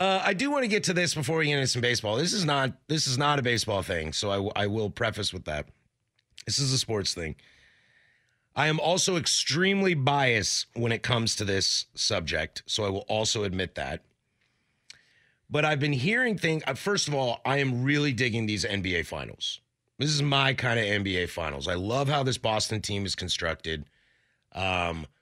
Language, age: English, 30-49